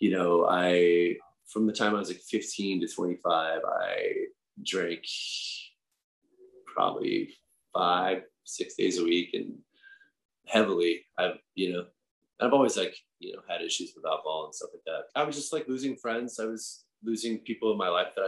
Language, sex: English, male